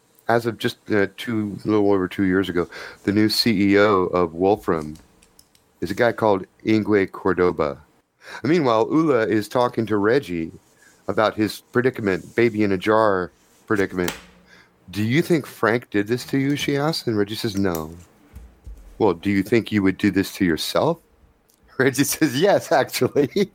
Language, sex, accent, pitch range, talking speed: English, male, American, 95-115 Hz, 165 wpm